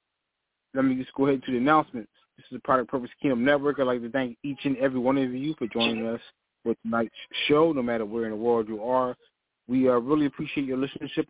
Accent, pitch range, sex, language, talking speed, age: American, 120-155 Hz, male, English, 245 wpm, 20-39